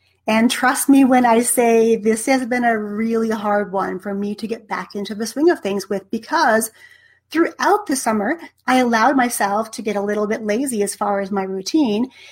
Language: English